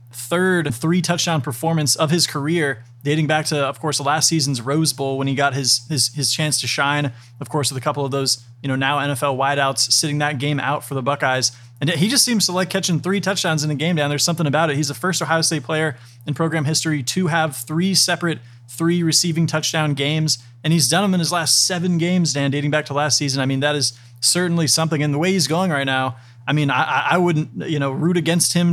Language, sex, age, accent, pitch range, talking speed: English, male, 30-49, American, 135-165 Hz, 240 wpm